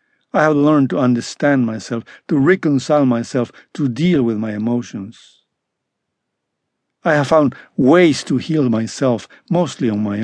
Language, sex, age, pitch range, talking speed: English, male, 60-79, 120-150 Hz, 140 wpm